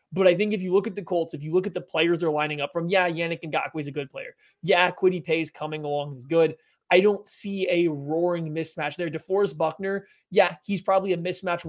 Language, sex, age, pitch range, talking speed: English, male, 20-39, 155-185 Hz, 240 wpm